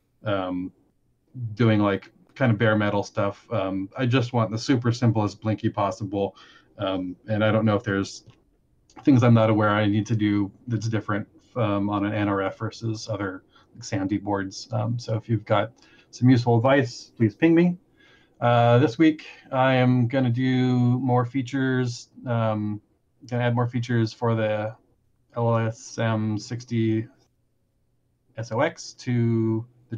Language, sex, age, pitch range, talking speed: English, male, 30-49, 105-125 Hz, 155 wpm